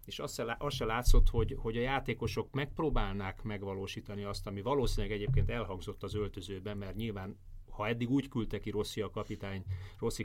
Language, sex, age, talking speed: Hungarian, male, 30-49, 165 wpm